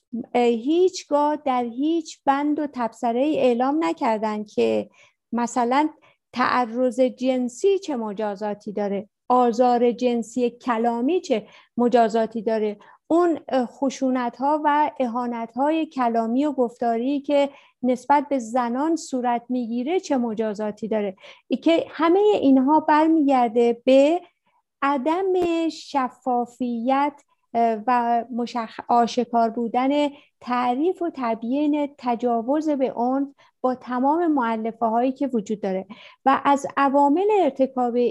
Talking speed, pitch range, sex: 110 wpm, 235-290 Hz, female